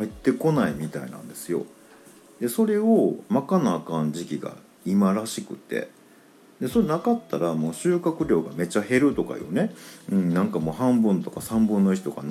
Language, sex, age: Japanese, male, 50-69